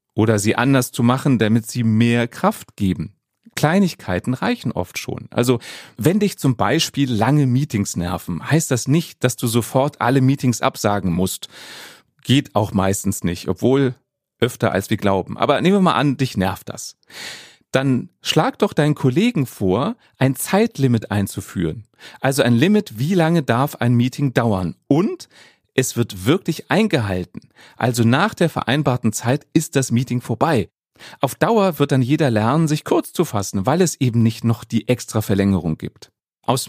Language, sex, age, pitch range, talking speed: German, male, 30-49, 110-155 Hz, 165 wpm